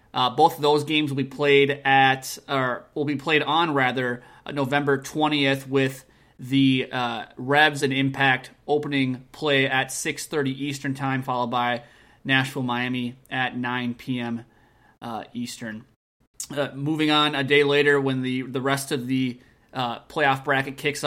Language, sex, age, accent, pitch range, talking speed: English, male, 30-49, American, 130-150 Hz, 155 wpm